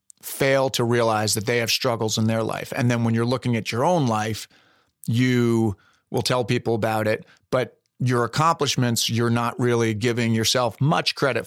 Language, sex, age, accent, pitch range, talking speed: English, male, 40-59, American, 110-130 Hz, 185 wpm